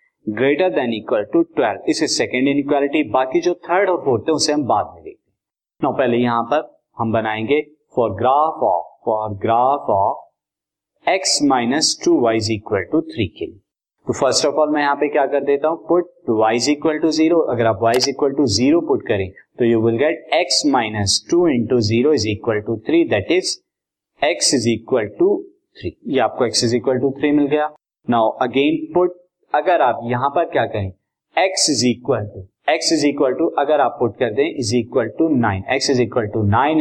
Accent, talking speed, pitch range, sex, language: native, 195 wpm, 115-170 Hz, male, Hindi